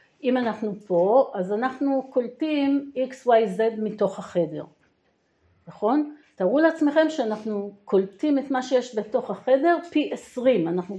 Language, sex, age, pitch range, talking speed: Hebrew, female, 50-69, 195-270 Hz, 130 wpm